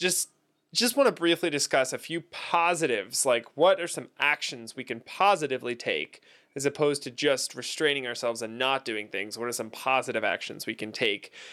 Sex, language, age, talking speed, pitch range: male, English, 20-39, 185 wpm, 125-165 Hz